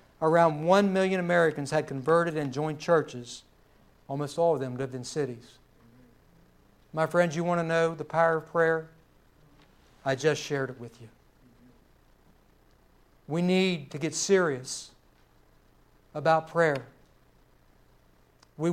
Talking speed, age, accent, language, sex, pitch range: 130 wpm, 60-79, American, English, male, 135-180 Hz